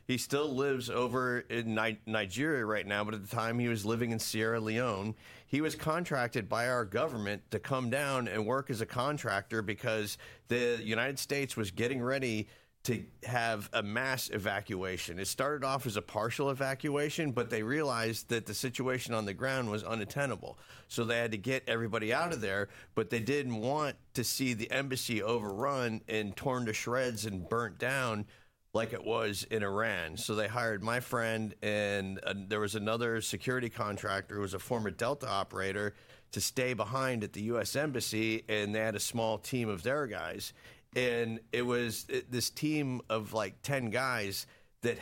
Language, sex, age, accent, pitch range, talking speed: English, male, 40-59, American, 105-125 Hz, 180 wpm